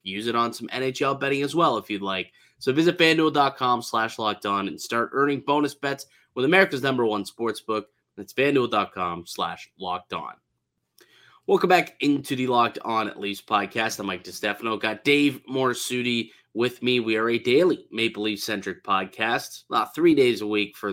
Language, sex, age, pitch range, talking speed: English, male, 20-39, 110-140 Hz, 175 wpm